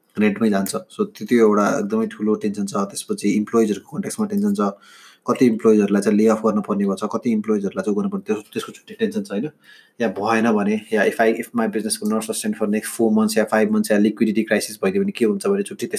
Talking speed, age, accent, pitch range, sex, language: 115 wpm, 20-39, Indian, 105-175 Hz, male, English